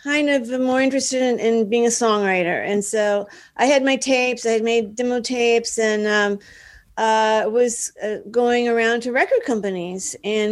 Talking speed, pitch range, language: 175 wpm, 205-245 Hz, English